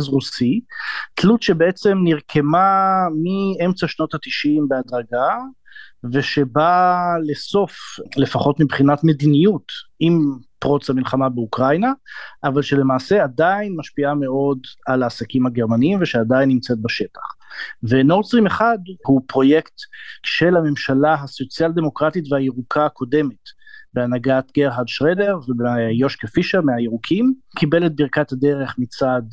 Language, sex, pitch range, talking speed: Hebrew, male, 130-185 Hz, 100 wpm